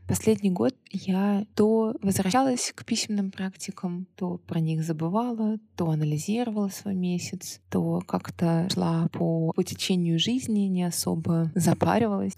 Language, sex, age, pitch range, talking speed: Russian, female, 20-39, 165-195 Hz, 125 wpm